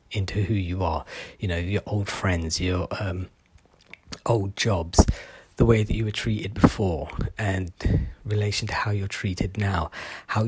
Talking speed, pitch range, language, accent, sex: 160 wpm, 90-110 Hz, English, British, male